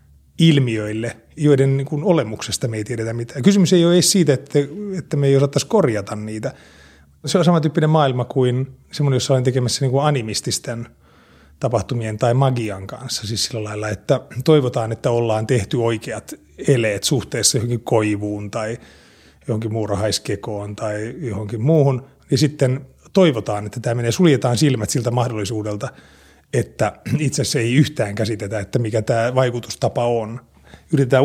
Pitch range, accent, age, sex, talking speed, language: 110-145 Hz, native, 30-49, male, 145 wpm, Finnish